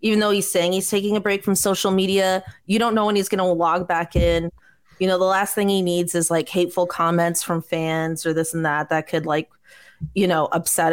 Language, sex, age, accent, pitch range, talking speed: English, female, 30-49, American, 175-210 Hz, 240 wpm